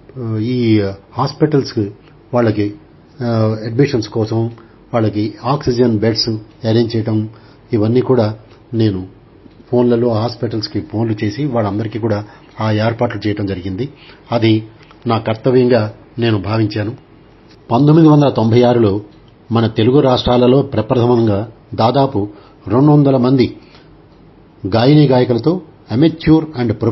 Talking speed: 90 wpm